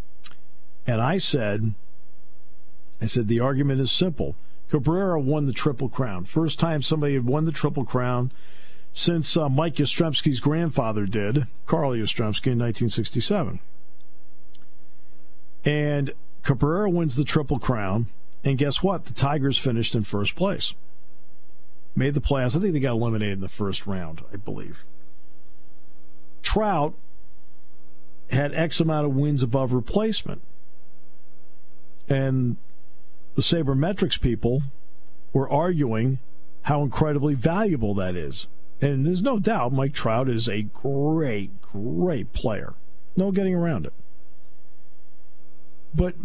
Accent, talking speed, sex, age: American, 125 wpm, male, 50-69